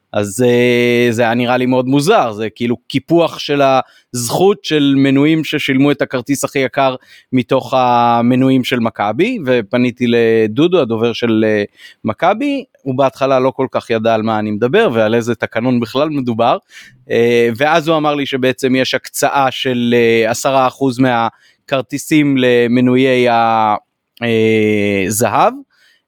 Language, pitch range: Hebrew, 120-150 Hz